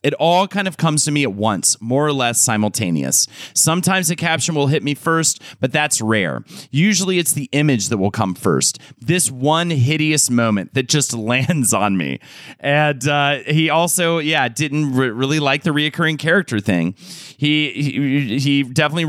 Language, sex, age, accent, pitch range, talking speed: English, male, 30-49, American, 120-155 Hz, 180 wpm